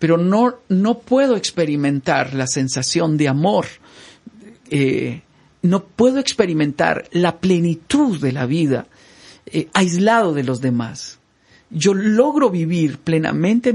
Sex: male